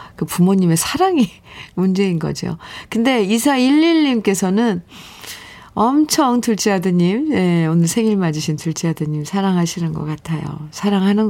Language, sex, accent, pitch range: Korean, female, native, 170-245 Hz